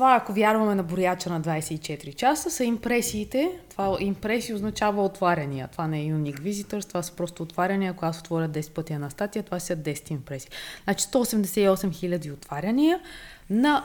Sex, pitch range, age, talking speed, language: female, 170-220 Hz, 20-39, 170 wpm, Bulgarian